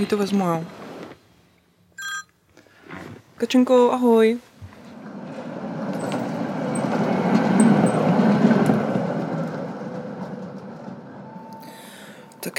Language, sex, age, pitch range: Czech, female, 20-39, 155-215 Hz